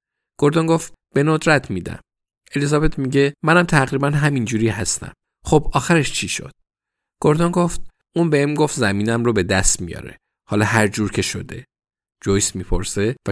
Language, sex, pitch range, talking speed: Persian, male, 105-135 Hz, 145 wpm